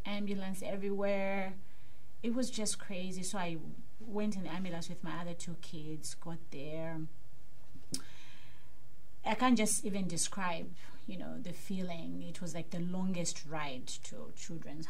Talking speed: 145 wpm